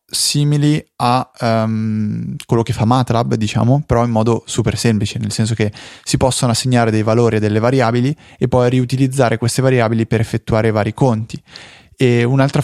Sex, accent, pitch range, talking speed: male, native, 110-130 Hz, 165 wpm